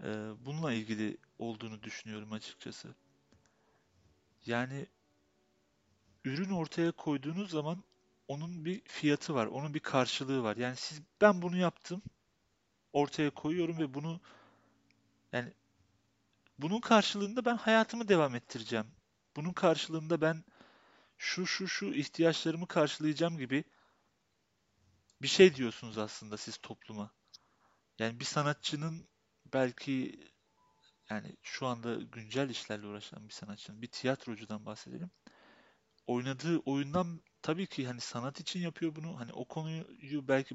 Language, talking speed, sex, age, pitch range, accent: Turkish, 115 wpm, male, 40-59, 110-165 Hz, native